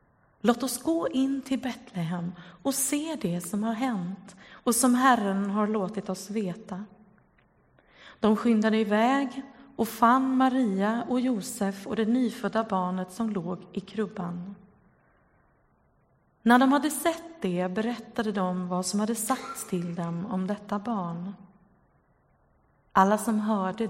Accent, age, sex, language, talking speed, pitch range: native, 30-49, female, Swedish, 135 wpm, 185-235 Hz